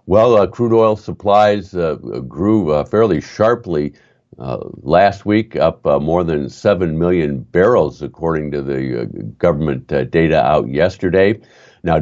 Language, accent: English, American